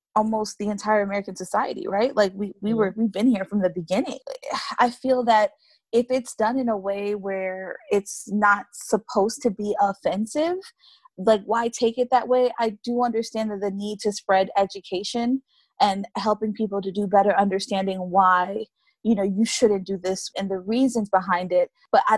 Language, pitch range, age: English, 195-235 Hz, 20-39